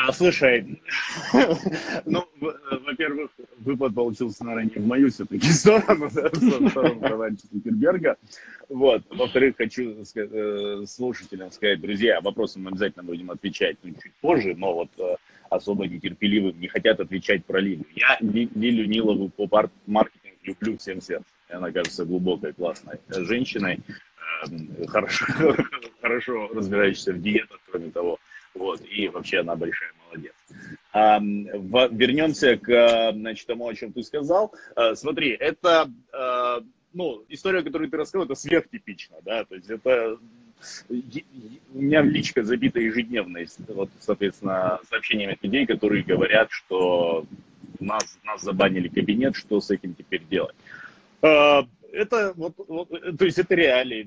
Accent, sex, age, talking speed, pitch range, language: native, male, 30-49, 120 wpm, 105-145 Hz, Russian